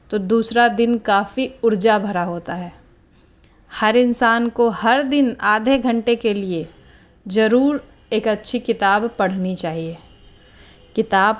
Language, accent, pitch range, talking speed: Hindi, native, 190-235 Hz, 125 wpm